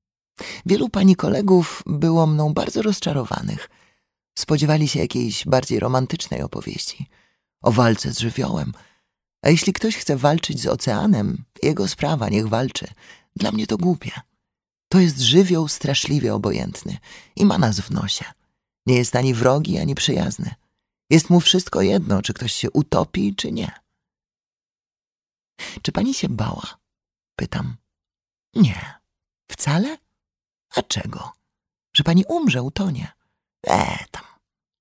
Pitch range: 115-180 Hz